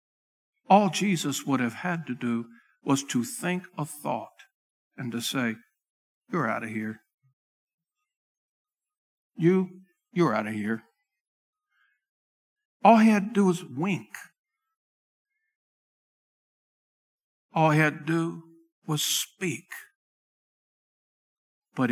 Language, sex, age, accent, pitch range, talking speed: English, male, 60-79, American, 165-265 Hz, 105 wpm